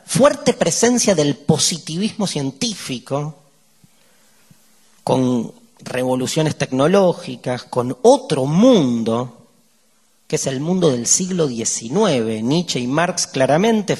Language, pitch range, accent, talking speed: Spanish, 130-200 Hz, Argentinian, 95 wpm